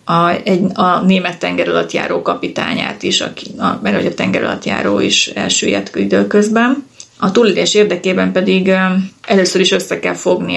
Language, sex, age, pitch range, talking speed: Hungarian, female, 30-49, 185-210 Hz, 140 wpm